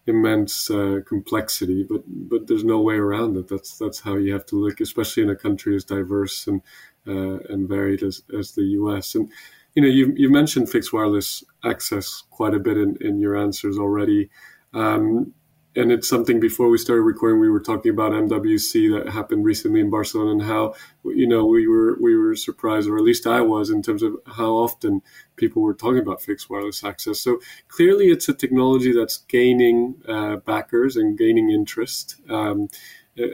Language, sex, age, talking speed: English, male, 20-39, 190 wpm